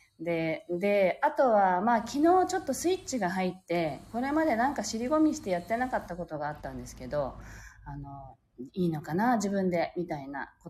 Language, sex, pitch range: Japanese, female, 160-255 Hz